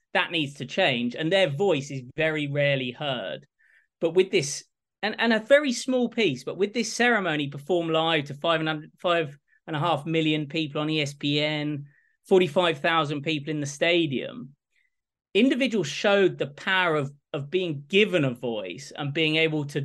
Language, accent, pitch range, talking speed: English, British, 145-180 Hz, 175 wpm